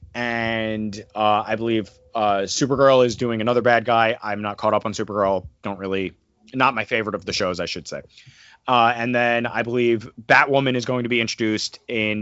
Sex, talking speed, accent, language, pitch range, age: male, 195 wpm, American, English, 110-135 Hz, 30-49